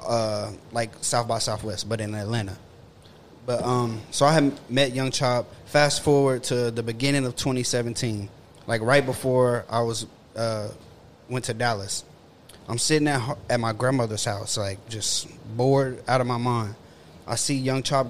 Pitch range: 110-130 Hz